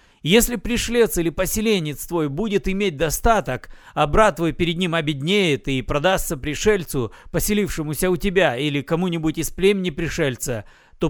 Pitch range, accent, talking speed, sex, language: 145-185 Hz, native, 140 wpm, male, Russian